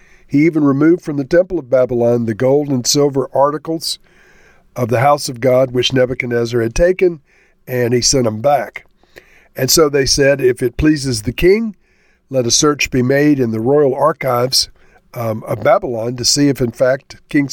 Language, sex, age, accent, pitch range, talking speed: English, male, 50-69, American, 120-150 Hz, 185 wpm